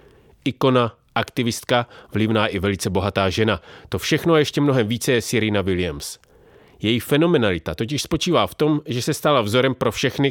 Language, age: Czech, 30-49